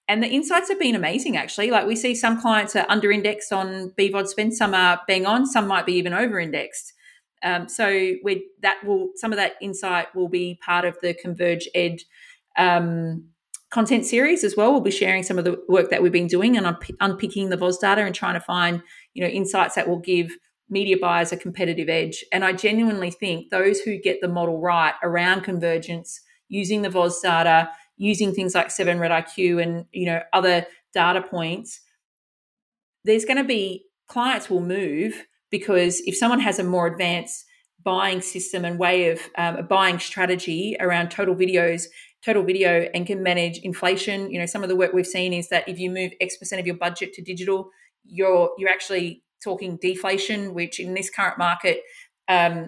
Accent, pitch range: Australian, 175-200 Hz